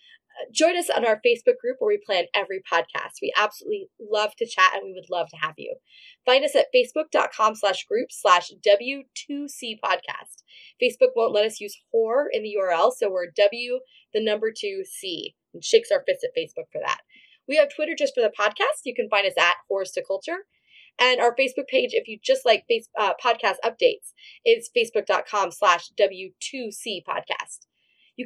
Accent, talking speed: American, 185 wpm